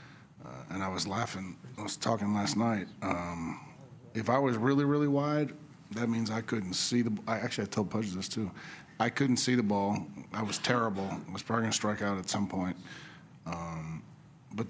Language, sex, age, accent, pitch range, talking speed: English, male, 40-59, American, 95-120 Hz, 210 wpm